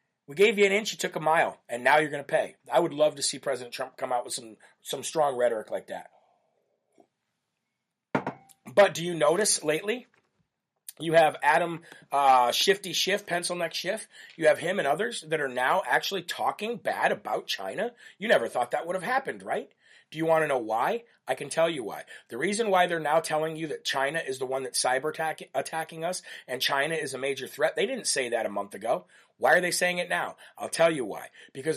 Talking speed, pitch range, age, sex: 225 wpm, 140-185 Hz, 40-59, male